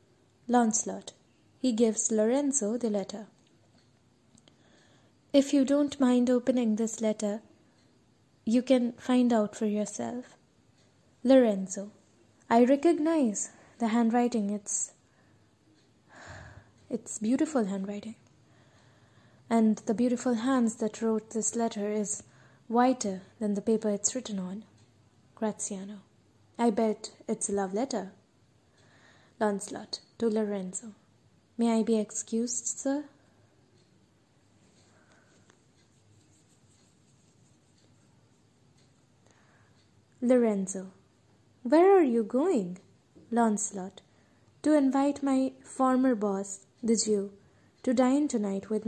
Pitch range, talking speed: 190-240 Hz, 95 wpm